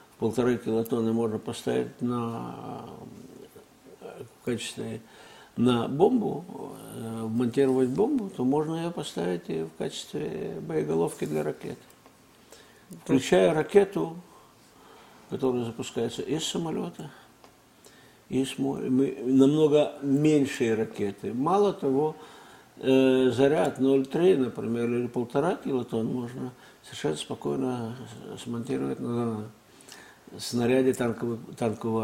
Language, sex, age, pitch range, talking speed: Russian, male, 60-79, 115-135 Hz, 90 wpm